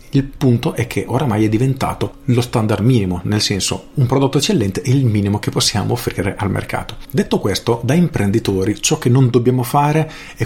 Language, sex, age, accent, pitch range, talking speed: Italian, male, 40-59, native, 105-130 Hz, 190 wpm